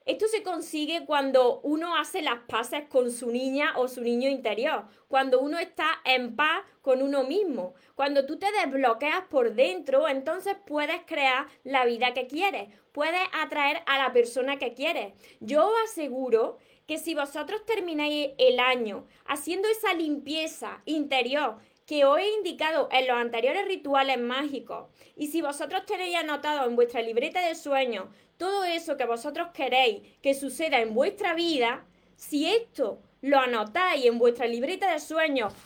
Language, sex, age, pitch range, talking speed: Spanish, female, 20-39, 265-345 Hz, 155 wpm